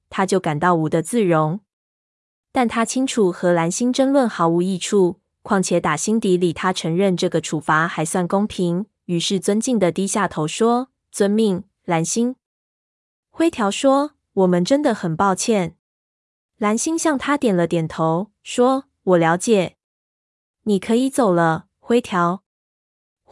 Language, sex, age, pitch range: Chinese, female, 20-39, 175-225 Hz